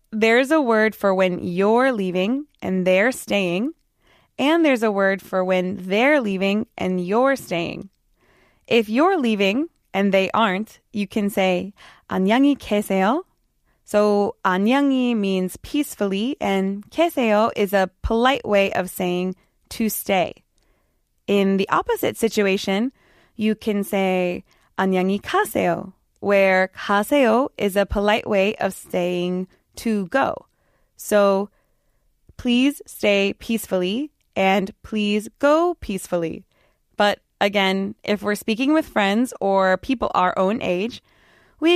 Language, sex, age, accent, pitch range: Korean, female, 20-39, American, 190-245 Hz